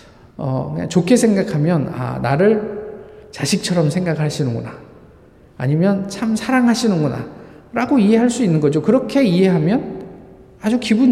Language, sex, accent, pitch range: Korean, male, native, 140-205 Hz